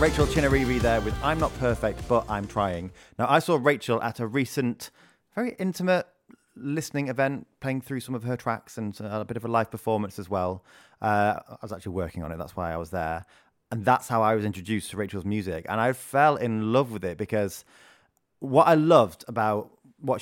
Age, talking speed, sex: 30-49, 205 wpm, male